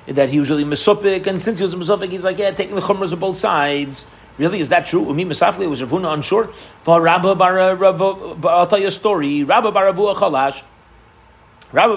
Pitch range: 165-205 Hz